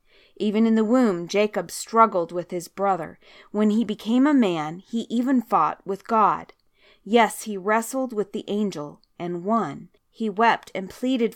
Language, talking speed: English, 165 wpm